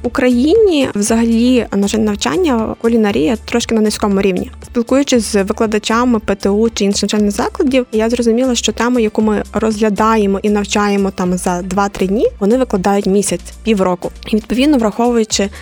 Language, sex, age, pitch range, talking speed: Ukrainian, female, 20-39, 205-240 Hz, 140 wpm